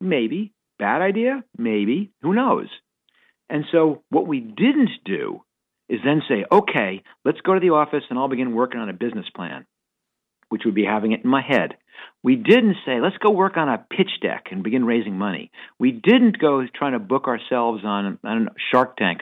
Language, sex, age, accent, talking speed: English, male, 50-69, American, 195 wpm